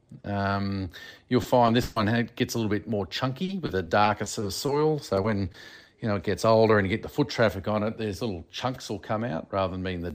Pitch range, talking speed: 95-120 Hz, 250 wpm